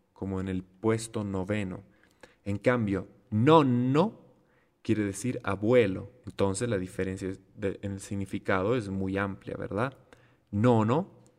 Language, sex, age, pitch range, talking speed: Italian, male, 30-49, 100-130 Hz, 115 wpm